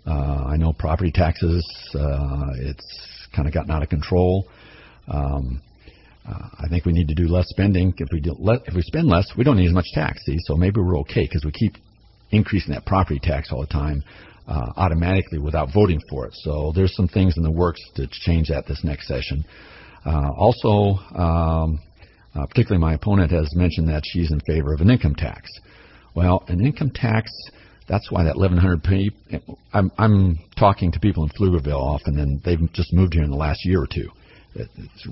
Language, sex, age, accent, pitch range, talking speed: English, male, 50-69, American, 80-105 Hz, 200 wpm